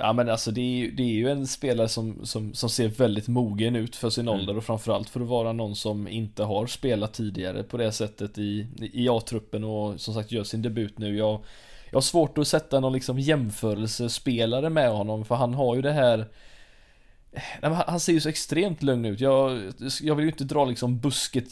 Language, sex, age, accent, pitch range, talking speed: Swedish, male, 20-39, native, 110-130 Hz, 220 wpm